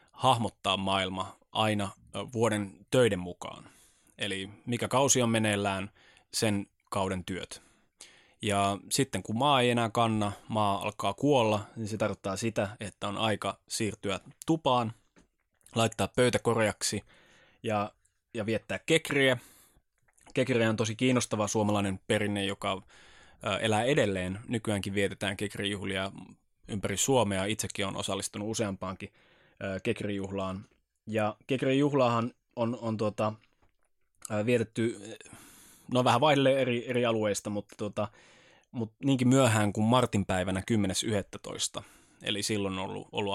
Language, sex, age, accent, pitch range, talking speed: Finnish, male, 20-39, native, 100-115 Hz, 115 wpm